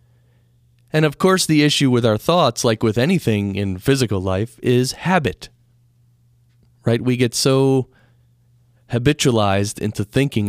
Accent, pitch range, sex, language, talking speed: American, 105-120 Hz, male, English, 130 wpm